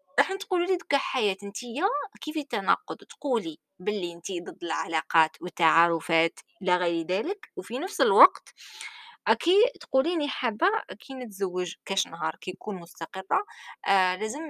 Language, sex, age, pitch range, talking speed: Arabic, female, 20-39, 180-285 Hz, 125 wpm